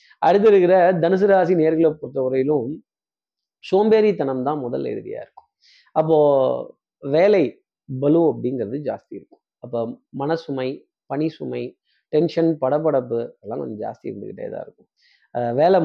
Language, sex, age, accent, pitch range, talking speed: Tamil, male, 30-49, native, 140-185 Hz, 115 wpm